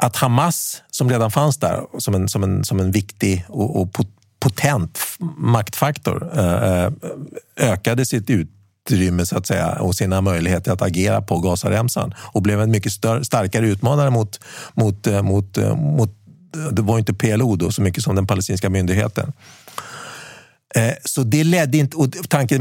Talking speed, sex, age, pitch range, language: 155 wpm, male, 50-69, 100-135 Hz, Swedish